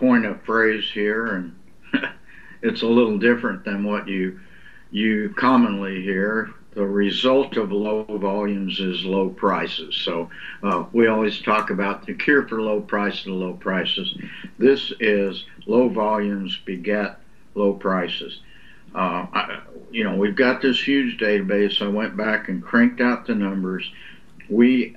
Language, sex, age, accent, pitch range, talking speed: English, male, 60-79, American, 100-120 Hz, 150 wpm